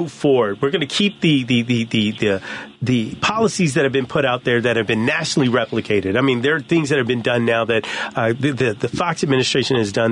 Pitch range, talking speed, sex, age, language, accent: 115-145 Hz, 250 wpm, male, 40-59, English, American